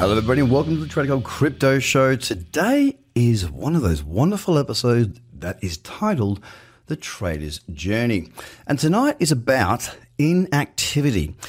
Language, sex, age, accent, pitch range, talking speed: English, male, 30-49, Australian, 100-145 Hz, 140 wpm